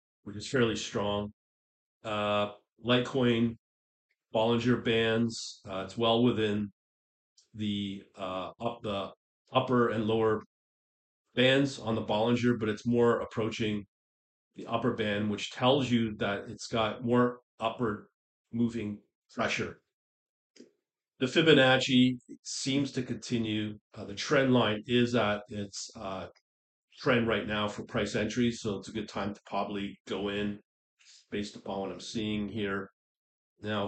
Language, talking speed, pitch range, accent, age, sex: English, 135 wpm, 100-120 Hz, American, 40-59, male